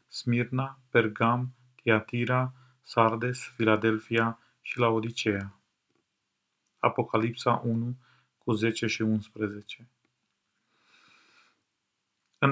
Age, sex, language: 40-59, male, Romanian